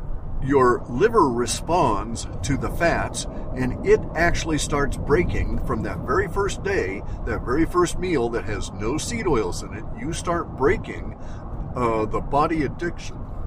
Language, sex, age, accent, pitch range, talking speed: English, male, 50-69, American, 105-130 Hz, 150 wpm